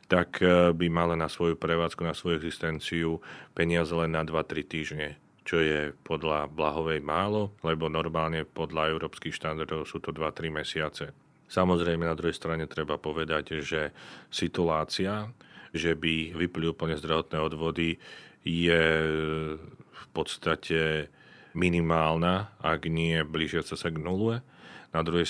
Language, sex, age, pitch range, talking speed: Slovak, male, 40-59, 80-85 Hz, 130 wpm